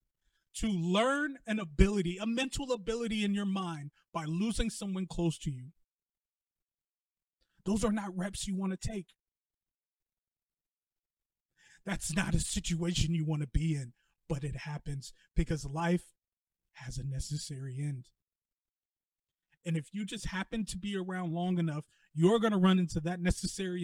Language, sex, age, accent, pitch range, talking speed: English, male, 30-49, American, 150-195 Hz, 140 wpm